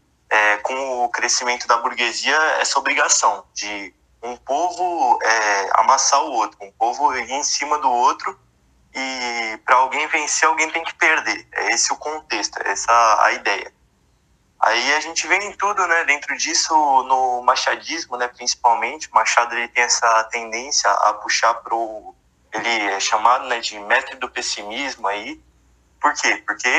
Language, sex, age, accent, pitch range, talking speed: Portuguese, male, 20-39, Brazilian, 110-165 Hz, 160 wpm